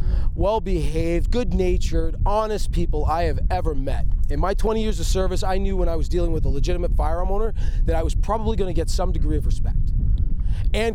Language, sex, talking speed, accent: English, male, 205 wpm, American